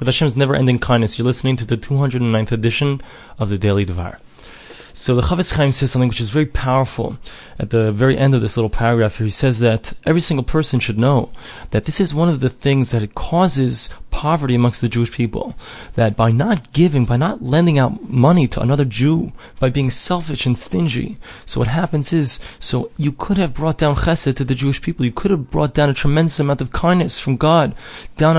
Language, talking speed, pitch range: English, 215 wpm, 125-150 Hz